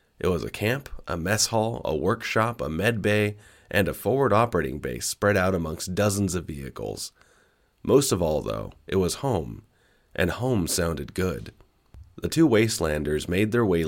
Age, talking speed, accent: 30-49, 175 wpm, American